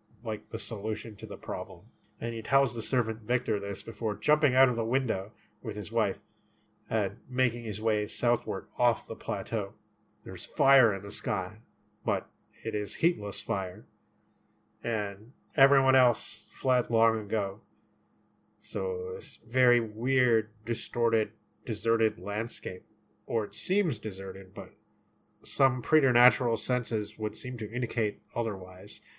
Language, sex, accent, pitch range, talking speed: English, male, American, 105-120 Hz, 135 wpm